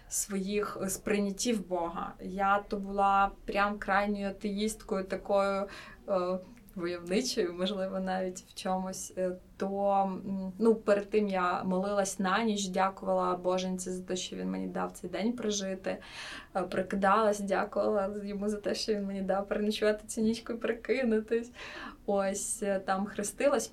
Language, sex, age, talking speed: Ukrainian, female, 20-39, 130 wpm